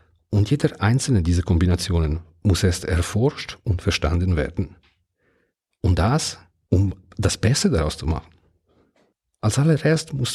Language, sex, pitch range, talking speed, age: German, male, 85-110 Hz, 130 wpm, 50-69